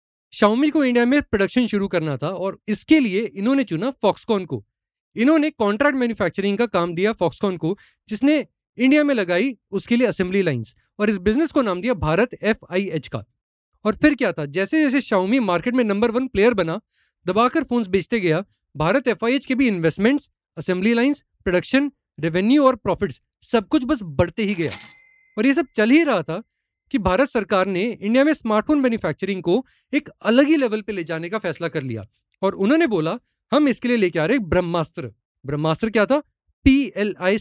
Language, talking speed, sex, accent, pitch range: Hindi, 185 wpm, male, native, 175-260 Hz